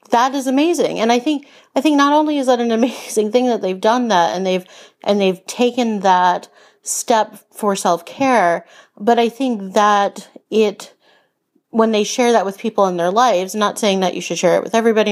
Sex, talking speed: female, 205 wpm